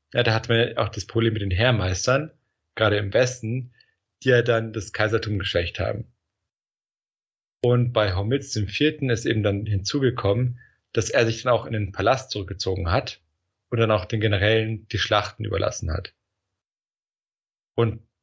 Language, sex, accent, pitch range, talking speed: German, male, German, 95-120 Hz, 160 wpm